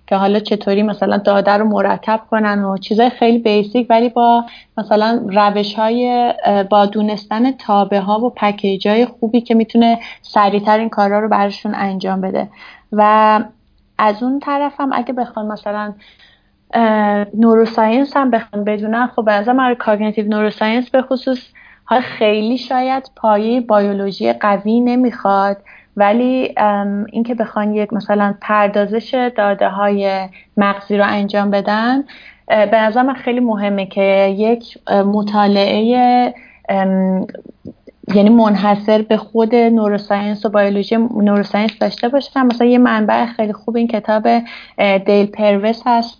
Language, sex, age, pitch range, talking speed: Persian, female, 30-49, 205-235 Hz, 120 wpm